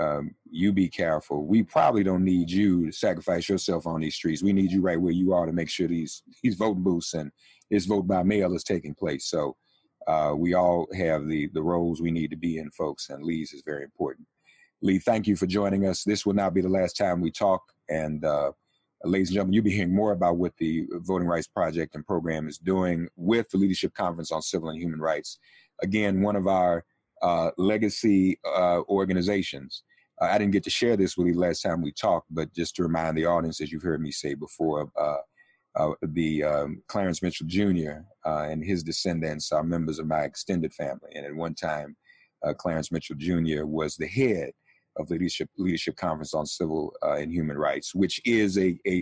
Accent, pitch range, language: American, 80-95 Hz, English